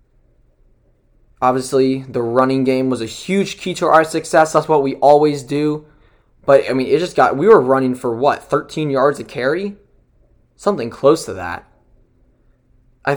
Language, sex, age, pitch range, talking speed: English, male, 20-39, 125-160 Hz, 160 wpm